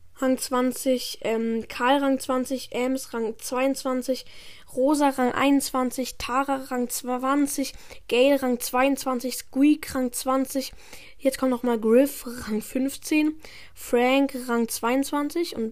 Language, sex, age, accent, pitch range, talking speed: German, female, 10-29, German, 235-265 Hz, 120 wpm